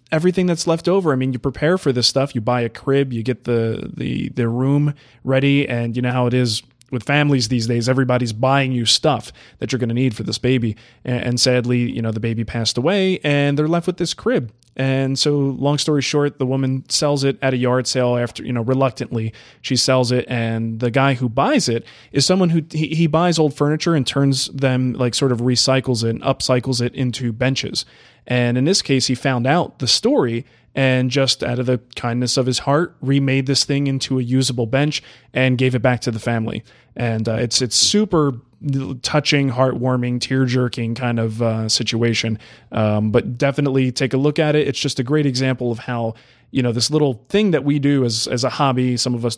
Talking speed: 220 wpm